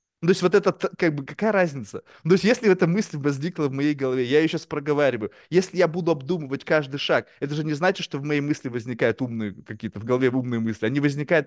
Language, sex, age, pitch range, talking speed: Russian, male, 20-39, 130-155 Hz, 240 wpm